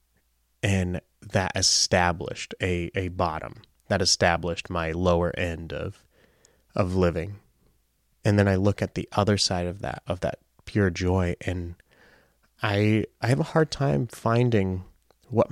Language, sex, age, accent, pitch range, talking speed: English, male, 30-49, American, 85-100 Hz, 145 wpm